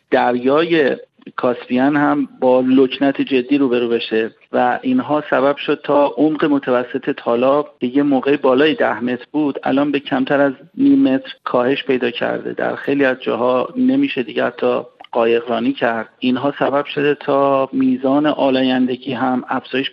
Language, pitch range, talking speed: Persian, 125-145 Hz, 150 wpm